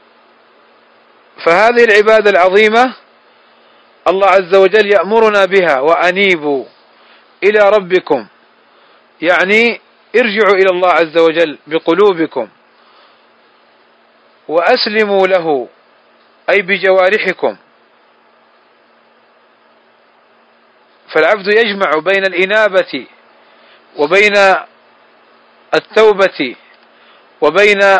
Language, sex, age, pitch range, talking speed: Arabic, male, 40-59, 180-215 Hz, 60 wpm